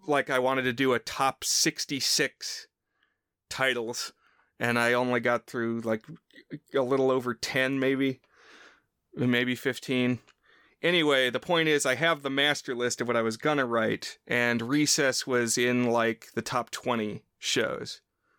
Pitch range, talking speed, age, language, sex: 120-140 Hz, 150 wpm, 30-49, English, male